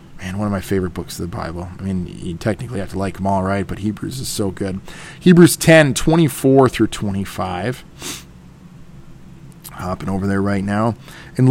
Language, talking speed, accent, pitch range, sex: English, 175 wpm, American, 100-125 Hz, male